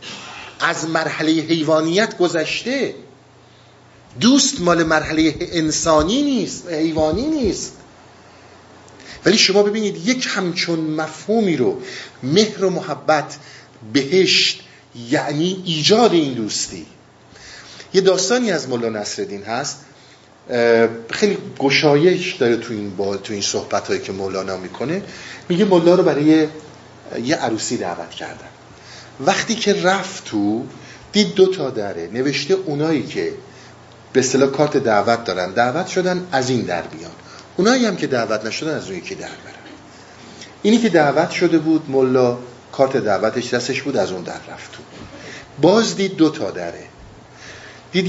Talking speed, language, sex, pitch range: 130 wpm, Persian, male, 130-185 Hz